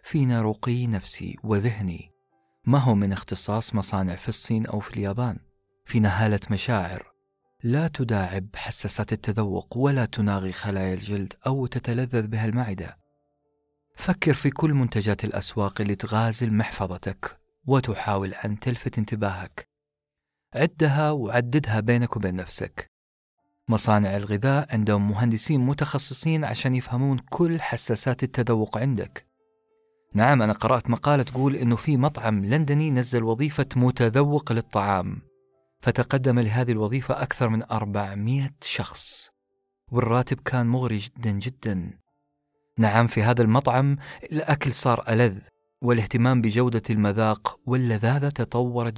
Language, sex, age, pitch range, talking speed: Arabic, male, 40-59, 100-130 Hz, 115 wpm